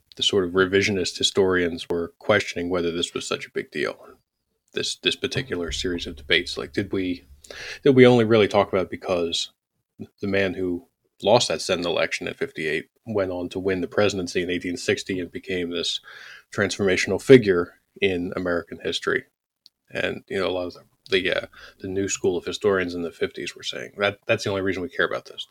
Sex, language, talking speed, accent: male, English, 200 wpm, American